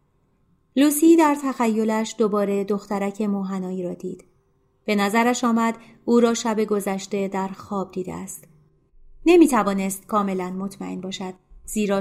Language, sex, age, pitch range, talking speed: Persian, female, 30-49, 190-225 Hz, 120 wpm